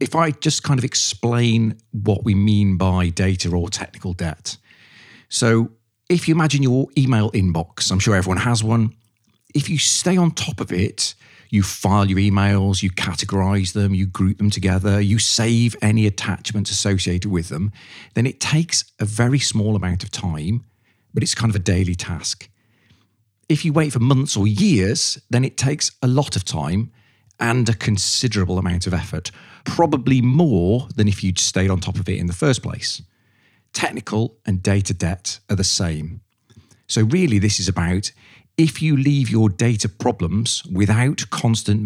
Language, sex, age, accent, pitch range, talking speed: English, male, 40-59, British, 95-120 Hz, 175 wpm